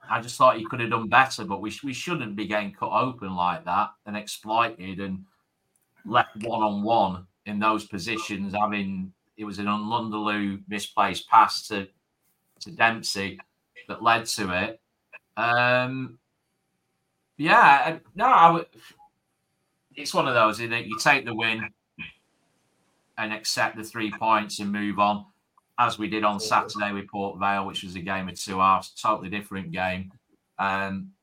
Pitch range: 100-120 Hz